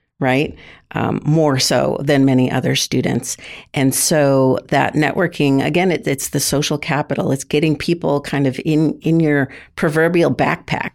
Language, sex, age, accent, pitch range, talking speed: English, female, 50-69, American, 135-155 Hz, 155 wpm